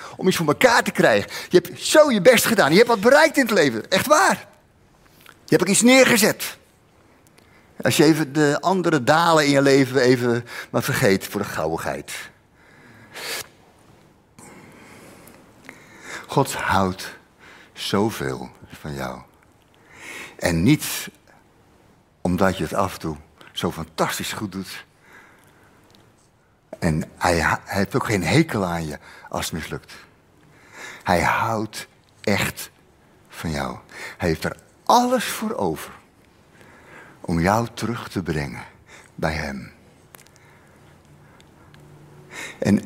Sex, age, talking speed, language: male, 60-79, 125 wpm, Dutch